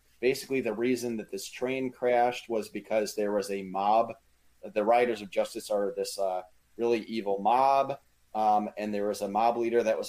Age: 30-49